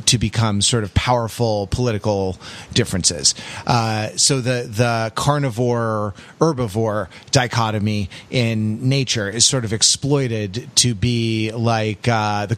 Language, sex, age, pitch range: English, male, 30-49, 105-125 Hz